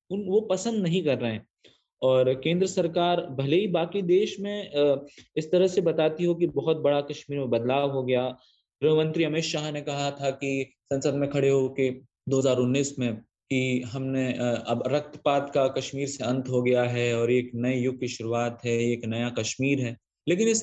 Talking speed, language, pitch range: 190 wpm, English, 130-165 Hz